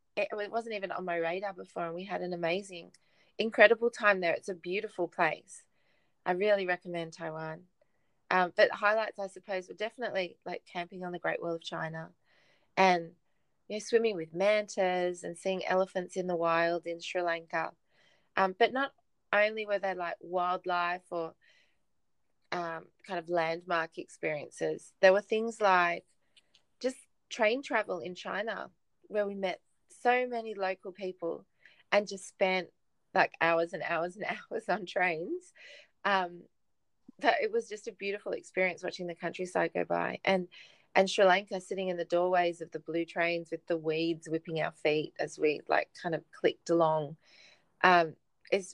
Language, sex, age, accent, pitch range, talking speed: English, female, 30-49, Australian, 170-205 Hz, 165 wpm